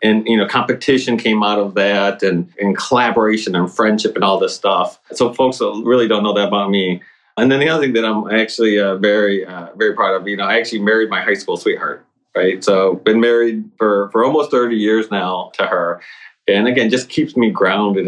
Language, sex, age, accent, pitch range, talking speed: English, male, 30-49, American, 100-115 Hz, 220 wpm